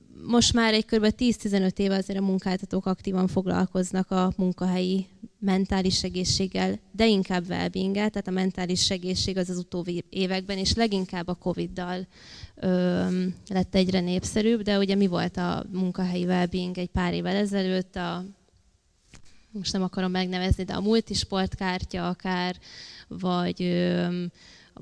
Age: 20-39